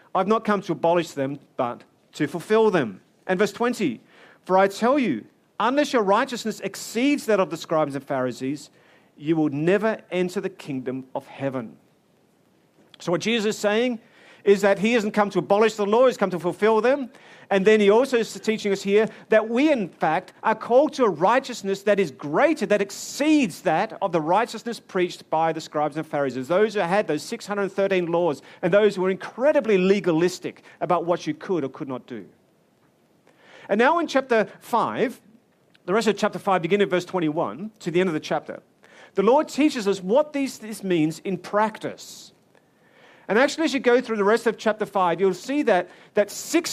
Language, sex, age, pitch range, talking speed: English, male, 40-59, 175-225 Hz, 195 wpm